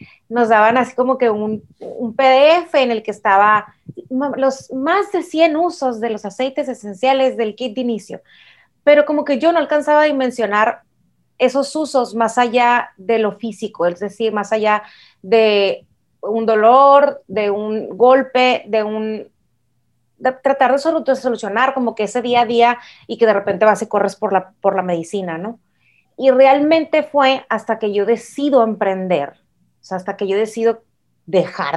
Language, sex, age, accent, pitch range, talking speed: English, female, 30-49, Mexican, 205-270 Hz, 170 wpm